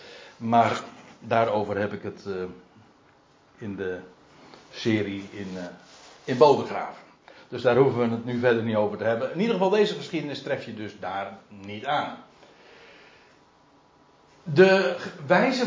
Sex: male